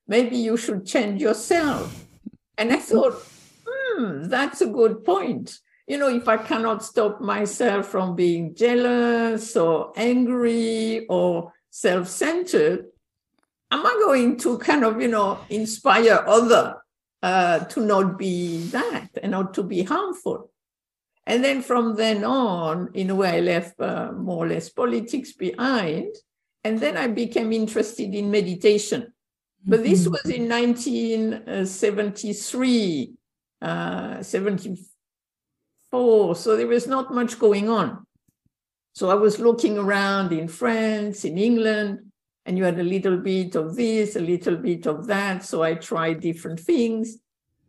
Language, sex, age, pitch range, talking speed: English, female, 60-79, 195-245 Hz, 140 wpm